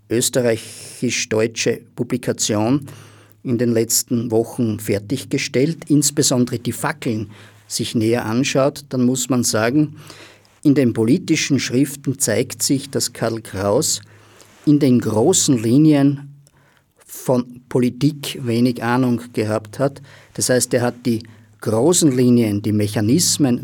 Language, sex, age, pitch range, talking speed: German, male, 50-69, 115-140 Hz, 115 wpm